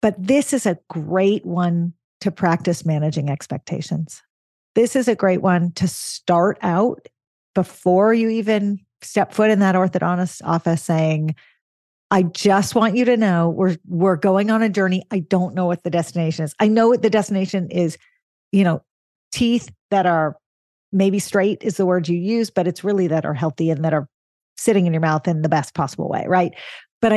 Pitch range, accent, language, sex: 170-210 Hz, American, English, female